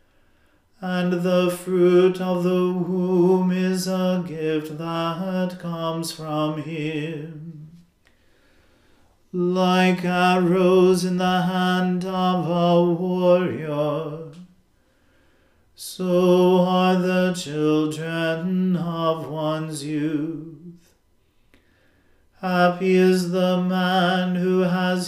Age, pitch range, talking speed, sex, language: 40-59, 155-185 Hz, 80 wpm, male, English